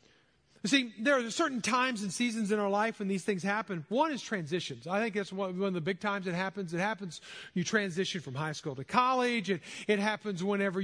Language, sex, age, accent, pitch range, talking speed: English, male, 40-59, American, 185-235 Hz, 220 wpm